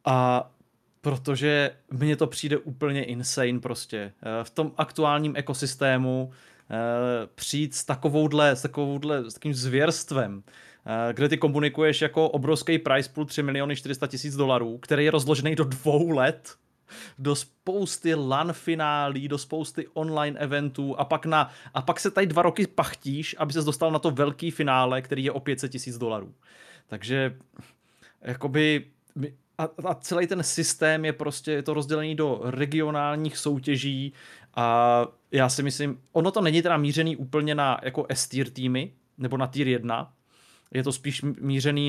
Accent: native